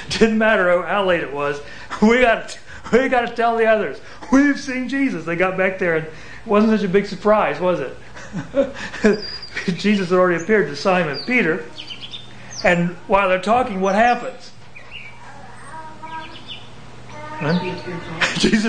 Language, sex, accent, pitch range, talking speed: English, male, American, 135-210 Hz, 150 wpm